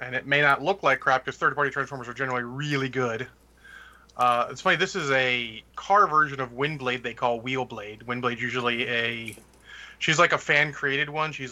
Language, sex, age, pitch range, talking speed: English, male, 30-49, 120-145 Hz, 190 wpm